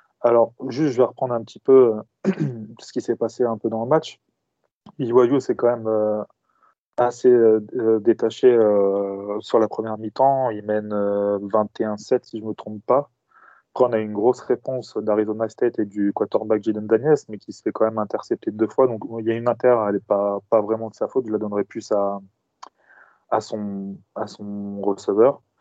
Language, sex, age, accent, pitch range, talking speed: French, male, 20-39, French, 105-120 Hz, 205 wpm